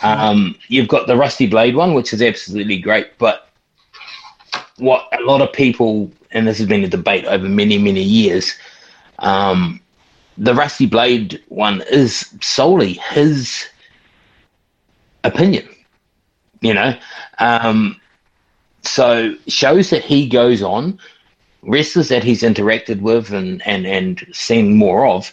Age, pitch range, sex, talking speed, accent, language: 30-49, 100-155 Hz, male, 135 wpm, Australian, English